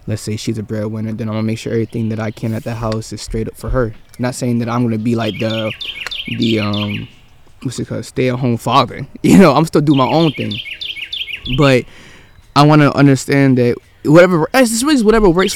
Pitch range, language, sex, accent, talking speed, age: 115-140 Hz, English, male, American, 230 wpm, 20-39